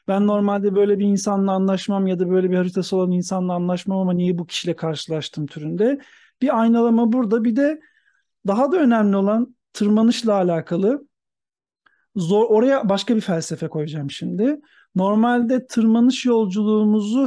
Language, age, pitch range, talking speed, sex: Turkish, 40-59, 180-220 Hz, 140 wpm, male